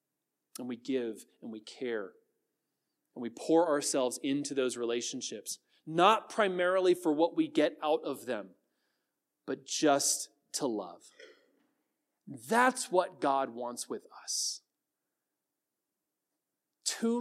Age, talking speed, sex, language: 30-49, 115 wpm, male, English